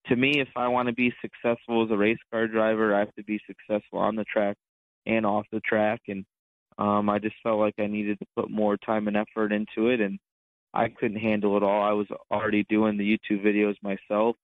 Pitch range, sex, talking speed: 105-115 Hz, male, 230 wpm